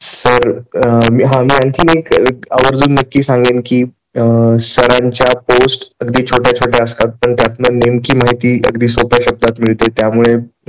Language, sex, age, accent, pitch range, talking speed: Marathi, male, 20-39, native, 115-130 Hz, 150 wpm